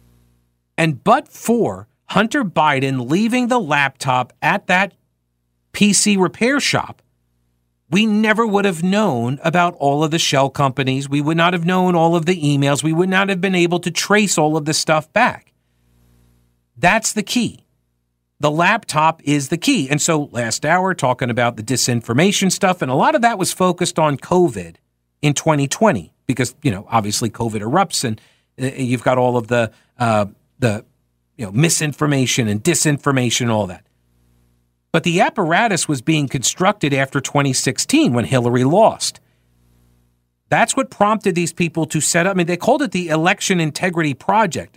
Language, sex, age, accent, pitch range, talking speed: English, male, 50-69, American, 115-180 Hz, 160 wpm